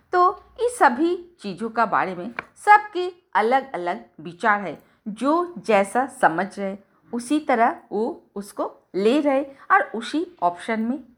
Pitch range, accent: 195-290 Hz, native